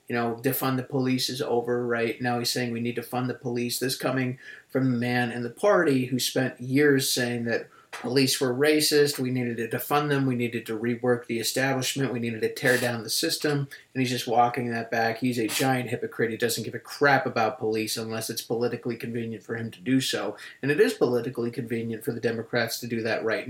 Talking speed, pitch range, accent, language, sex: 225 wpm, 120-145 Hz, American, English, male